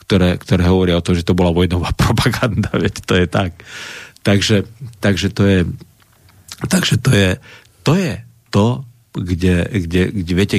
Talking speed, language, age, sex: 160 wpm, Slovak, 50-69, male